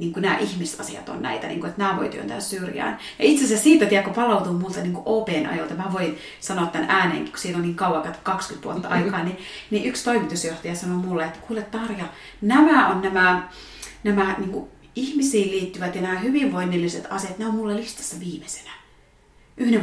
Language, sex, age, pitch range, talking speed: Finnish, female, 30-49, 175-235 Hz, 190 wpm